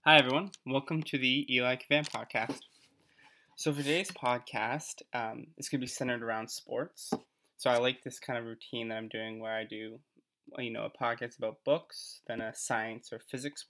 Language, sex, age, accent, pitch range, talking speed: English, male, 20-39, American, 115-145 Hz, 195 wpm